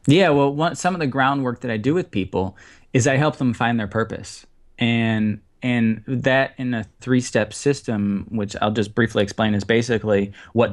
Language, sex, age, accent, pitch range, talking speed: English, male, 20-39, American, 100-120 Hz, 190 wpm